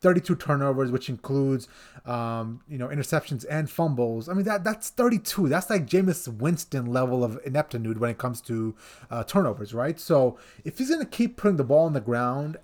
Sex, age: male, 30-49